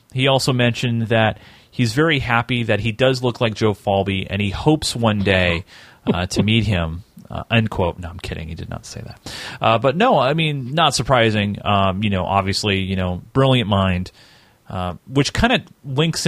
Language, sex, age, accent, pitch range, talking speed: English, male, 30-49, American, 105-140 Hz, 195 wpm